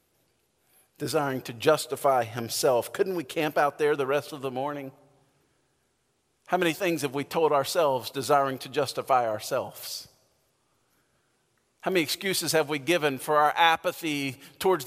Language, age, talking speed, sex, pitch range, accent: English, 50-69, 140 wpm, male, 150-195 Hz, American